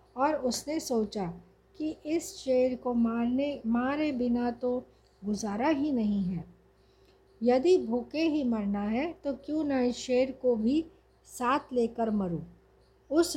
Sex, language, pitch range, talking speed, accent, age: female, Hindi, 230-285 Hz, 135 wpm, native, 50-69